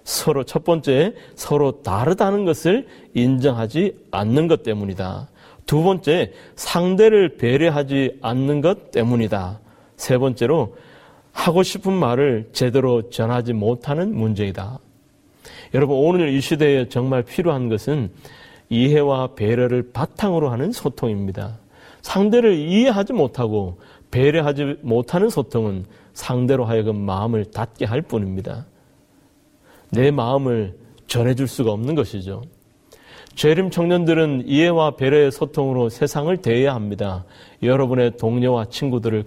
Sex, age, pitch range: male, 30-49, 110-145 Hz